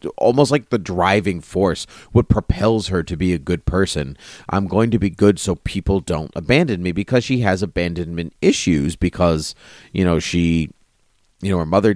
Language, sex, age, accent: English, male, 30-49, American